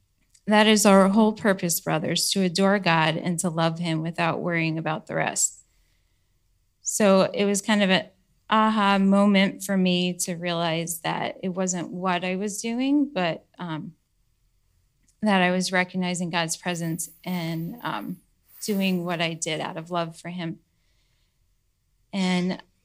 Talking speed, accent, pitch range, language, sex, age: 150 wpm, American, 165-195 Hz, English, female, 10-29